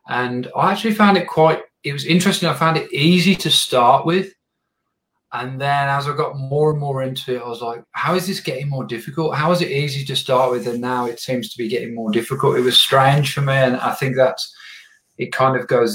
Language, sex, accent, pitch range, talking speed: English, male, British, 110-155 Hz, 240 wpm